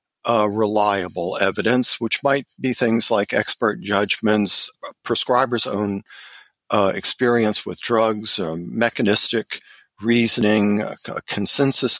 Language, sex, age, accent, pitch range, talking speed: English, male, 50-69, American, 105-125 Hz, 105 wpm